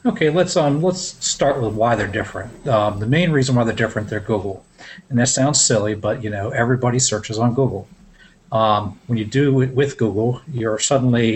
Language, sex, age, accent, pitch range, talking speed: English, male, 40-59, American, 110-130 Hz, 200 wpm